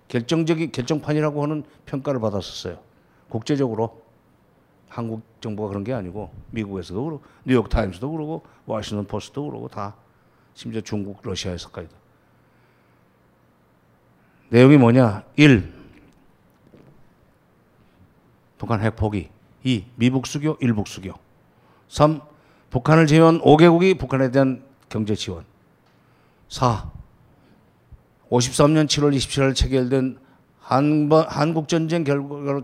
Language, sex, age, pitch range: Korean, male, 50-69, 115-150 Hz